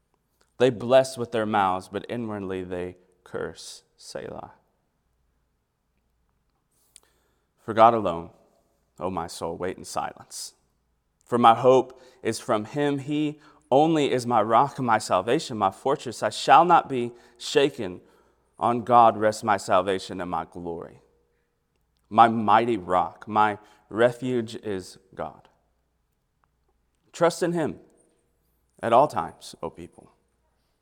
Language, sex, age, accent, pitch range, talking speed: English, male, 30-49, American, 95-140 Hz, 125 wpm